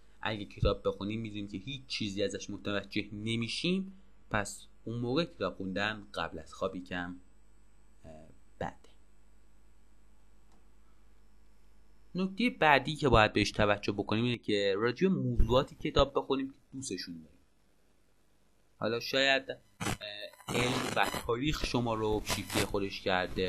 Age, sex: 30-49, male